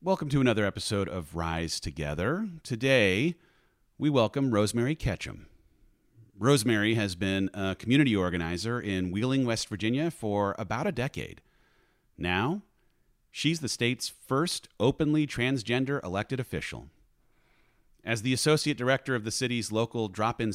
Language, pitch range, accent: English, 100-130 Hz, American